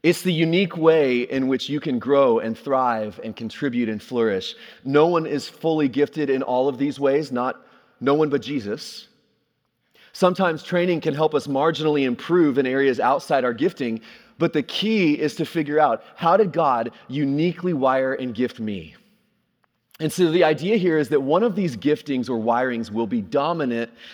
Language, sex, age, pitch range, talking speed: English, male, 30-49, 125-165 Hz, 180 wpm